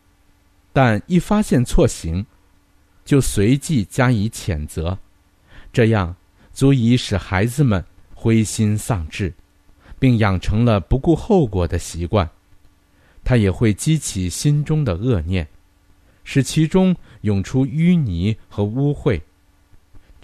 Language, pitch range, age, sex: Chinese, 90-125 Hz, 50-69, male